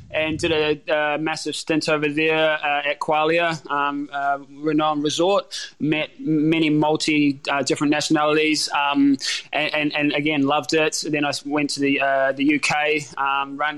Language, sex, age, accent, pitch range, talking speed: English, male, 20-39, Australian, 140-160 Hz, 160 wpm